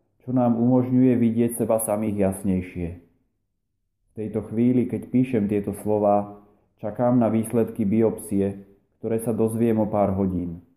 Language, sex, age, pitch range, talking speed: Slovak, male, 30-49, 100-115 Hz, 135 wpm